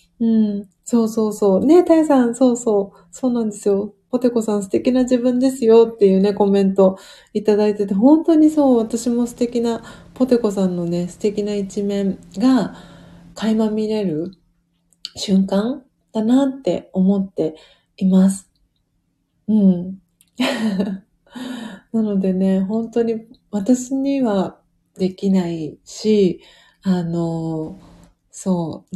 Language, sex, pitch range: Japanese, female, 180-240 Hz